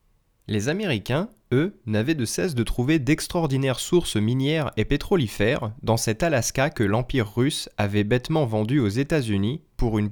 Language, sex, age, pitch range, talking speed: French, male, 20-39, 110-155 Hz, 155 wpm